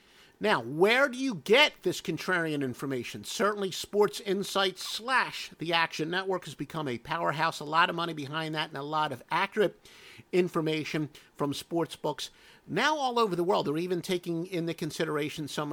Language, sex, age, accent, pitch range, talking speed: English, male, 50-69, American, 150-195 Hz, 170 wpm